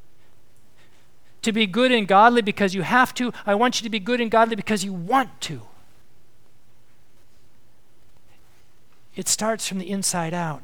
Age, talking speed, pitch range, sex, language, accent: 50-69, 150 wpm, 120-190 Hz, male, English, American